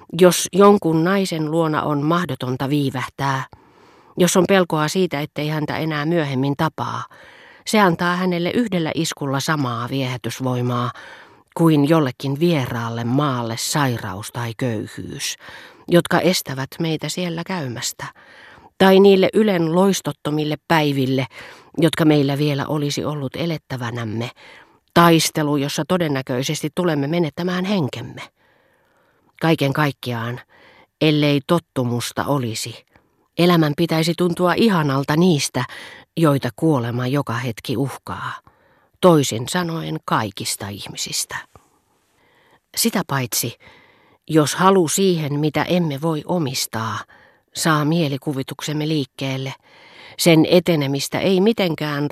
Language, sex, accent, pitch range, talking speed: Finnish, female, native, 130-170 Hz, 100 wpm